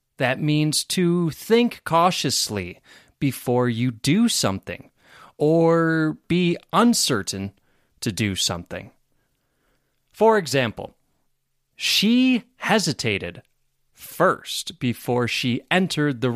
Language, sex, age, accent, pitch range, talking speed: English, male, 30-49, American, 125-195 Hz, 90 wpm